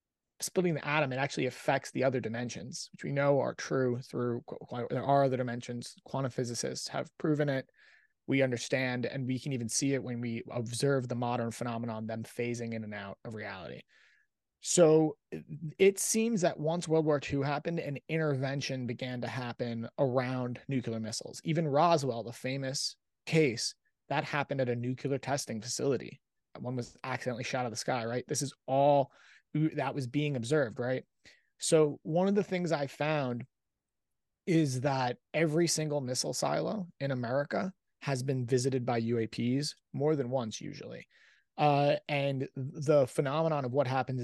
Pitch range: 120-145 Hz